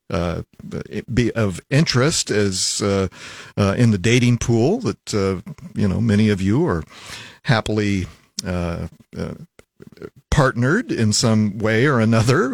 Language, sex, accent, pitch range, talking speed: English, male, American, 100-125 Hz, 135 wpm